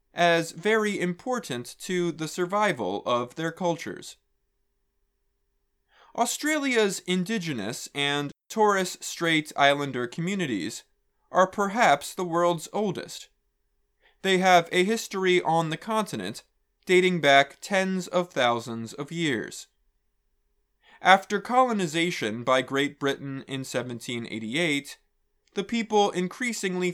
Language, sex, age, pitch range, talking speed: English, male, 20-39, 135-180 Hz, 100 wpm